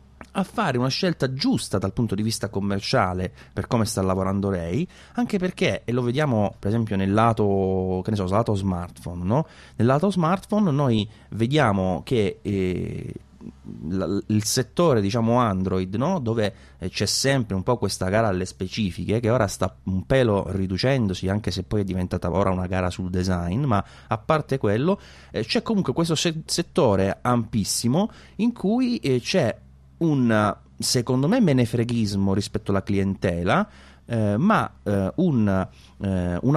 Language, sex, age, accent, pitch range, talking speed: English, male, 30-49, Italian, 95-130 Hz, 150 wpm